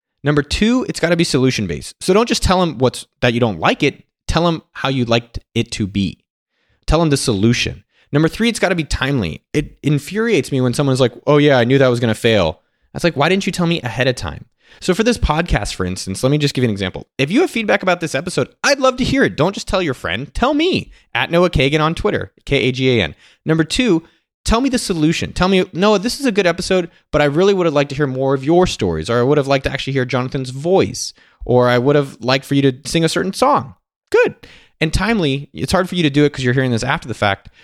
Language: English